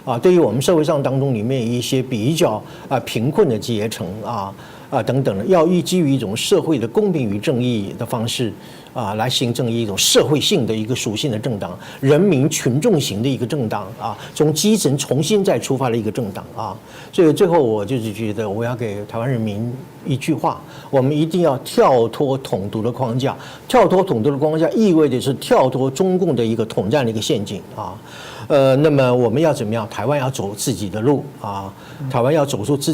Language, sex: Chinese, male